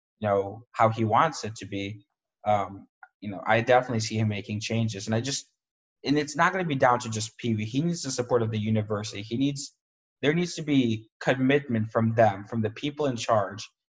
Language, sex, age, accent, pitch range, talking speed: English, male, 20-39, American, 110-130 Hz, 210 wpm